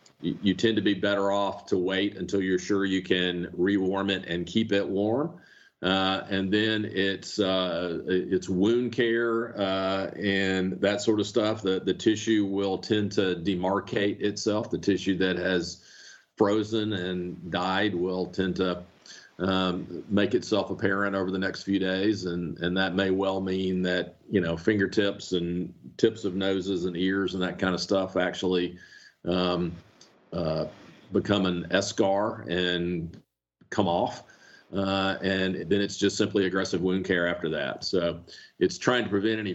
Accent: American